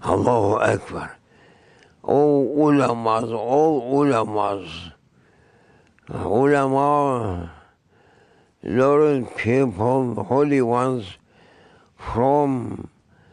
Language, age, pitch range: English, 60-79, 95-130 Hz